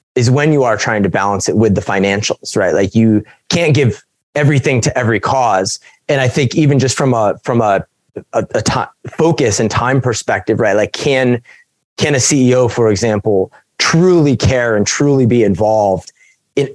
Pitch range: 110-140 Hz